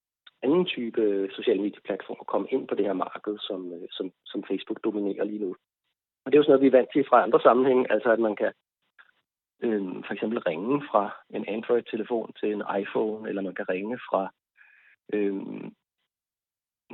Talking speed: 180 wpm